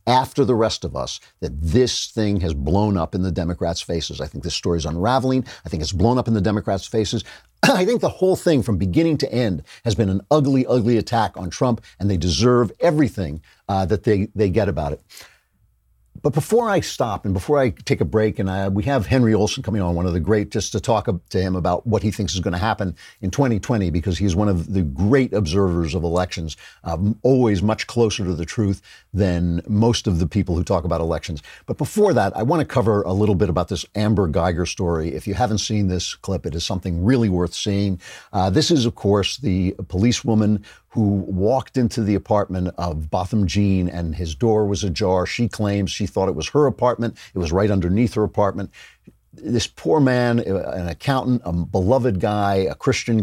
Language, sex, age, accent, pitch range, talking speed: English, male, 50-69, American, 90-115 Hz, 215 wpm